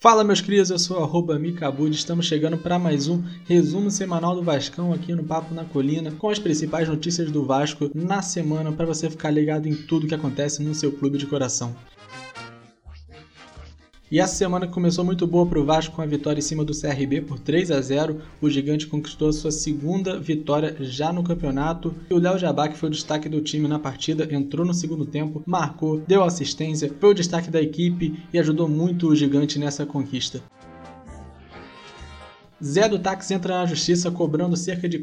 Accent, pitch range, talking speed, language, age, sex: Brazilian, 145-170 Hz, 185 wpm, Portuguese, 20-39, male